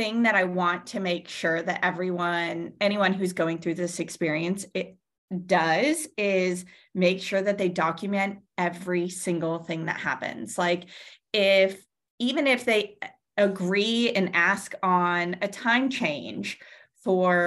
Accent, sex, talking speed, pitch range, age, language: American, female, 140 wpm, 175-210 Hz, 20-39, English